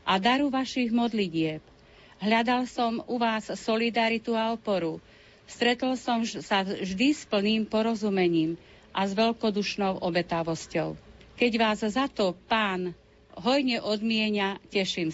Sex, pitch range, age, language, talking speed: female, 185-225 Hz, 40-59, Slovak, 120 wpm